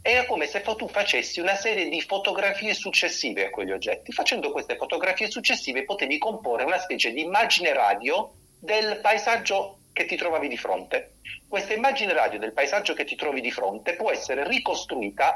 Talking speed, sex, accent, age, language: 170 wpm, male, native, 40-59, Italian